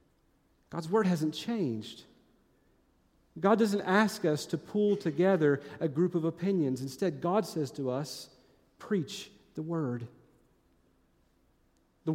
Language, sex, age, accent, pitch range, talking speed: English, male, 40-59, American, 155-205 Hz, 120 wpm